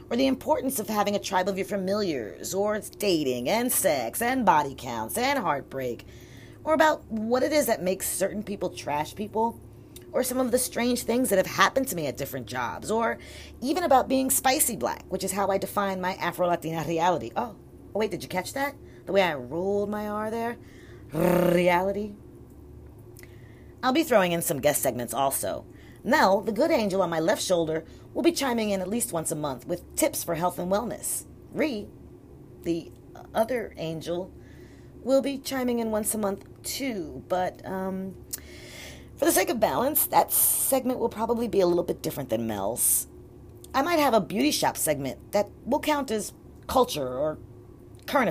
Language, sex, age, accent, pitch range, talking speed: English, female, 40-59, American, 175-245 Hz, 185 wpm